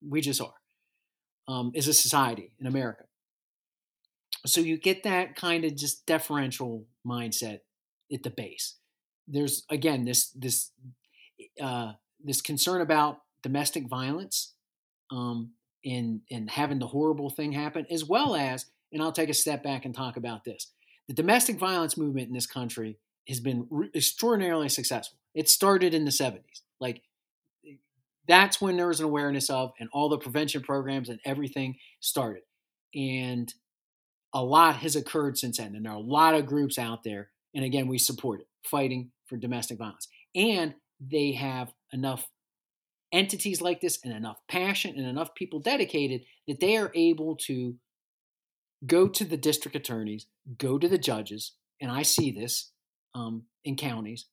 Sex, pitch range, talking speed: male, 120-155 Hz, 160 wpm